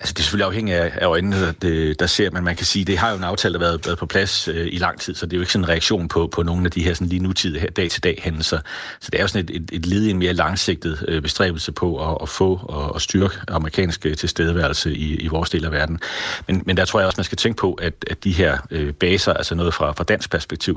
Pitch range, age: 80-95 Hz, 40-59